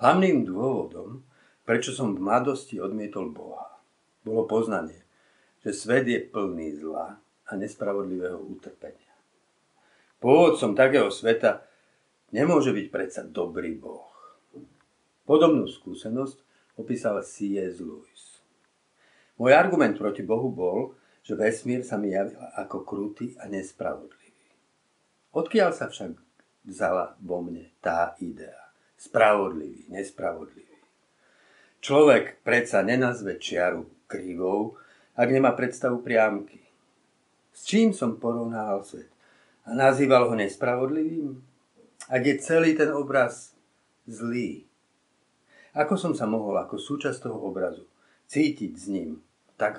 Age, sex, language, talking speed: 60-79, male, Slovak, 110 wpm